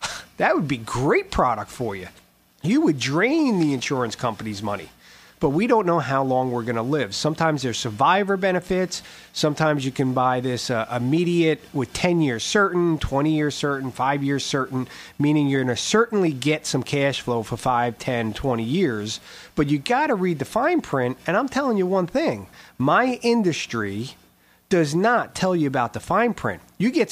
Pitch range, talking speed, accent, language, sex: 130-200 Hz, 190 wpm, American, English, male